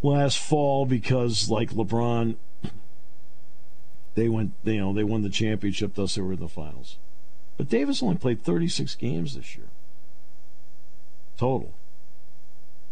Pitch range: 75-125 Hz